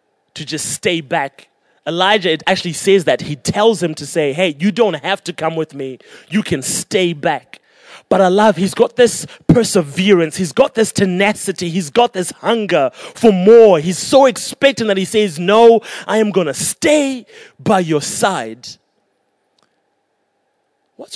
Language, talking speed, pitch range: English, 165 wpm, 155-205 Hz